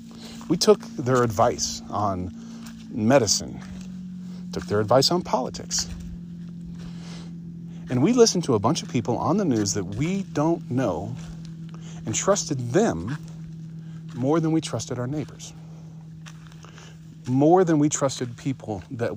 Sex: male